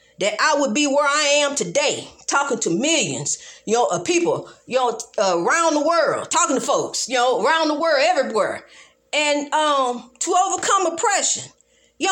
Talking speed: 180 wpm